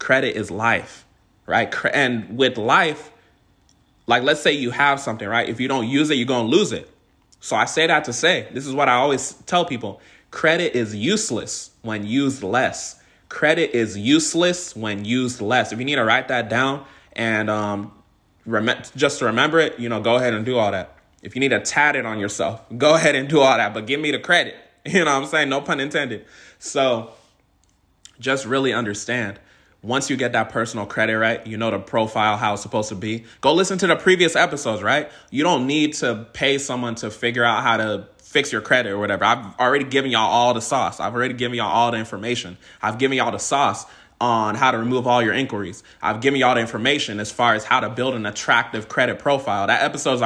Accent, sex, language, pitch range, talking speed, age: American, male, English, 105-135 Hz, 220 wpm, 20-39